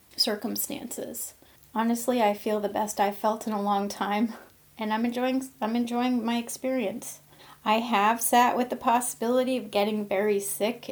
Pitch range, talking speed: 200-235 Hz, 160 wpm